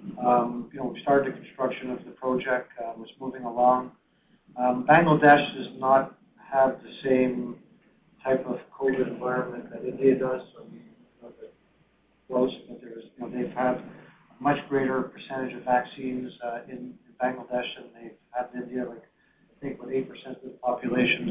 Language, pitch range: English, 125-140 Hz